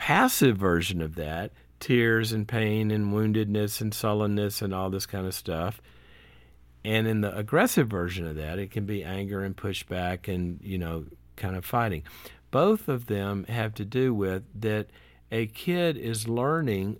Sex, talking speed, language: male, 170 wpm, English